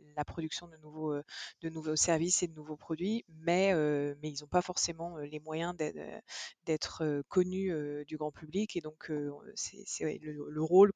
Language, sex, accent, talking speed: French, female, French, 195 wpm